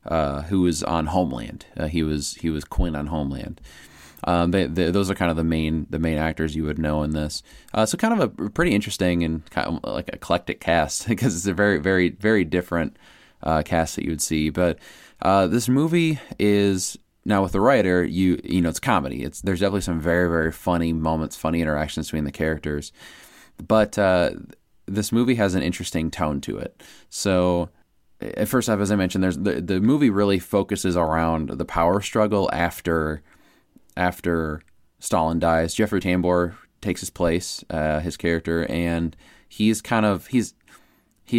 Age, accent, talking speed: 20-39, American, 185 wpm